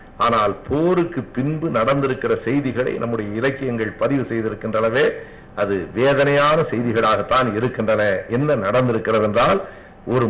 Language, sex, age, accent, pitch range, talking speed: Tamil, male, 50-69, native, 115-145 Hz, 100 wpm